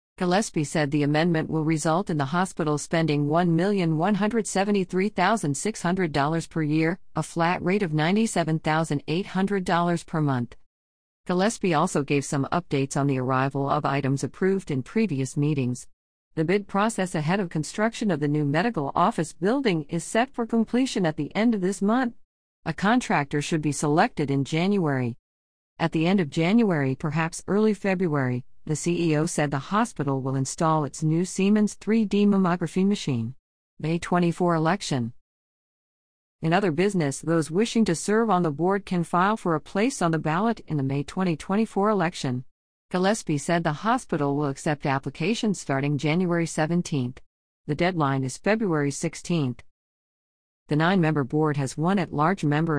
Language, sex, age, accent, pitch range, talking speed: English, female, 50-69, American, 145-190 Hz, 150 wpm